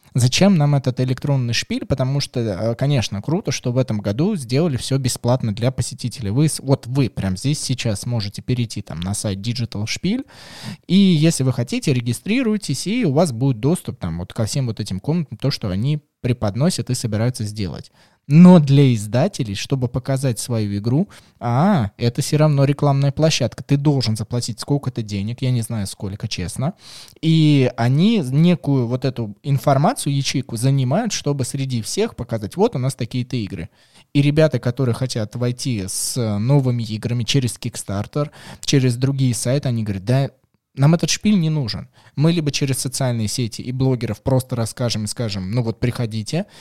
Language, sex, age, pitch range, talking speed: Russian, male, 20-39, 115-145 Hz, 165 wpm